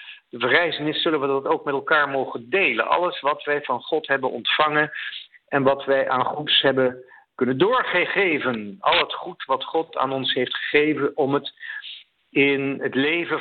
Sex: male